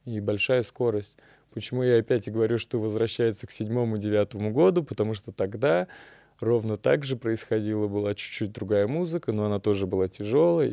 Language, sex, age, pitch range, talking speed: Russian, male, 20-39, 105-120 Hz, 160 wpm